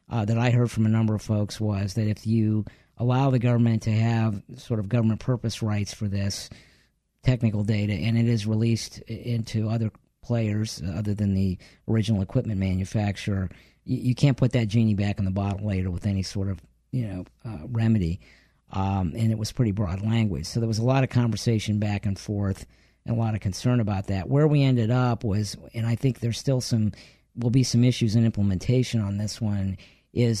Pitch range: 105-120 Hz